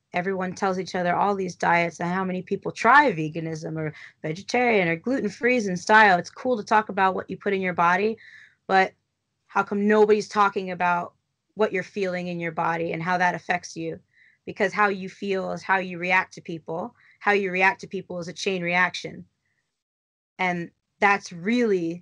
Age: 20-39